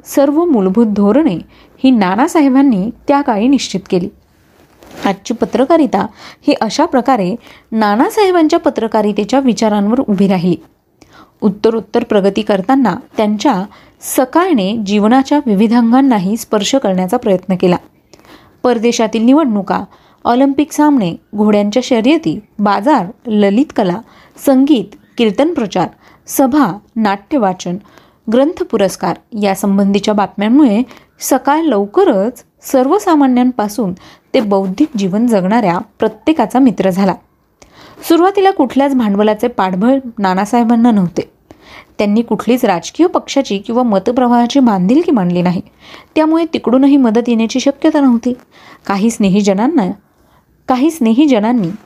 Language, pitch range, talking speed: Marathi, 205-270 Hz, 90 wpm